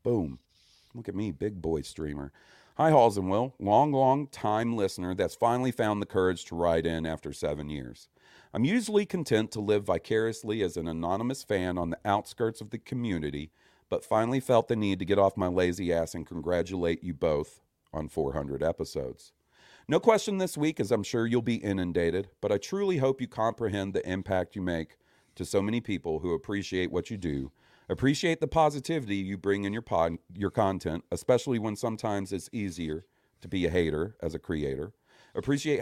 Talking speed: 190 wpm